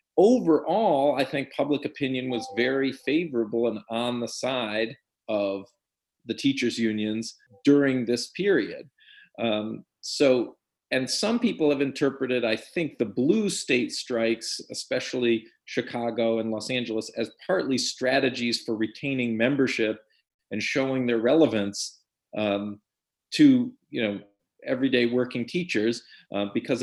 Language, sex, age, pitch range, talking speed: English, male, 40-59, 110-135 Hz, 125 wpm